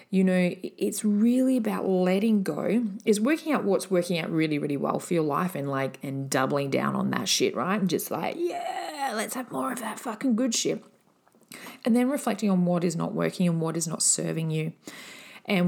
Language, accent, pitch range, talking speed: English, Australian, 175-225 Hz, 210 wpm